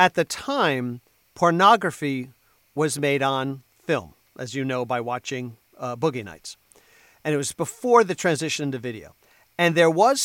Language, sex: English, male